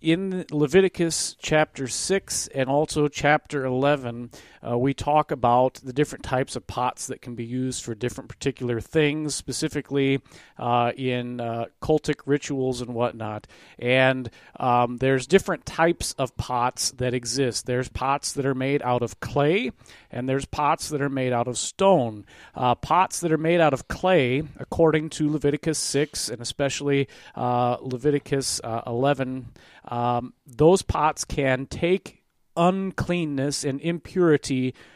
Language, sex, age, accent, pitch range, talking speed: English, male, 40-59, American, 125-150 Hz, 145 wpm